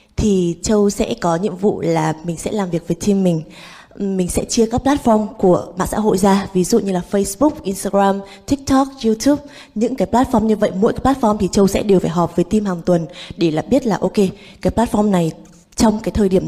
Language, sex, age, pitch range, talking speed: Vietnamese, female, 20-39, 175-215 Hz, 225 wpm